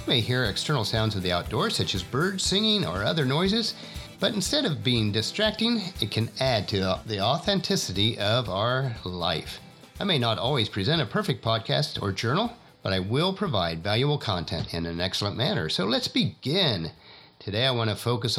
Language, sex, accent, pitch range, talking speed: English, male, American, 105-170 Hz, 185 wpm